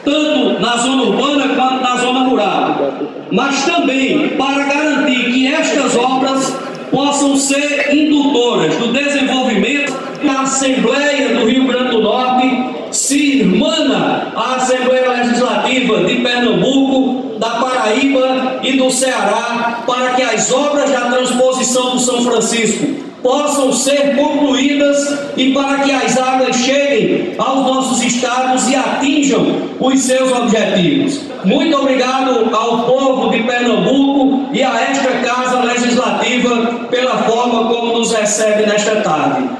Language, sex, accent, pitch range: Portuguese, male, Brazilian, 245-270 Hz